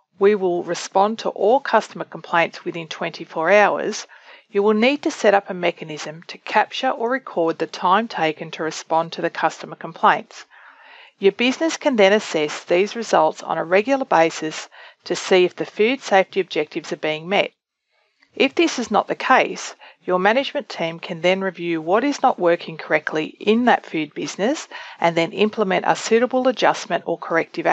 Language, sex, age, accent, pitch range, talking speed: English, female, 40-59, Australian, 170-235 Hz, 175 wpm